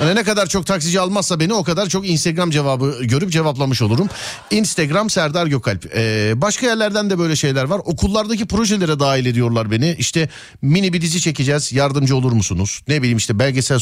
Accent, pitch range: native, 120-185 Hz